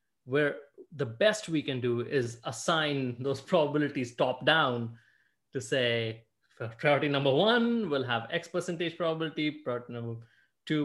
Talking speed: 140 wpm